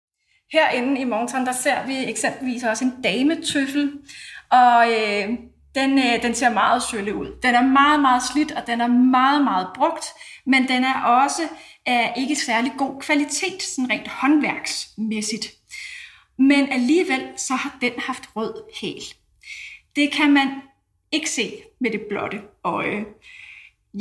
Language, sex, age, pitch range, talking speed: Danish, female, 30-49, 235-285 Hz, 150 wpm